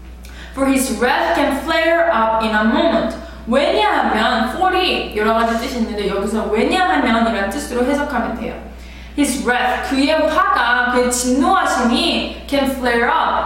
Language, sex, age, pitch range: Korean, female, 20-39, 225-325 Hz